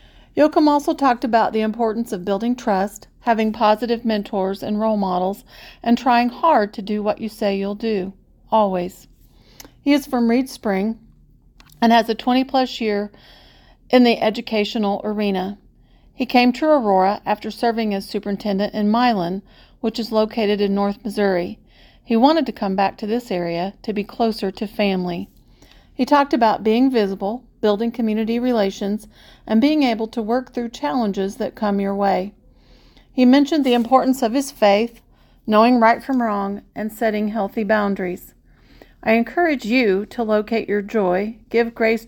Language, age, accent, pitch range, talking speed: English, 40-59, American, 200-235 Hz, 160 wpm